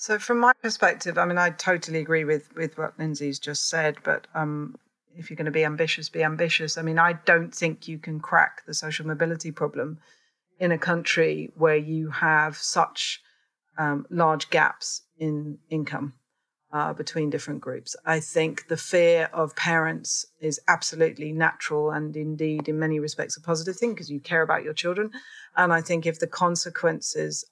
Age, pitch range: 40-59, 155-175 Hz